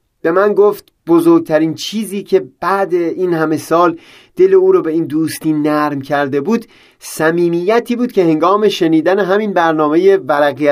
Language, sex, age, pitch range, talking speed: Persian, male, 30-49, 145-185 Hz, 150 wpm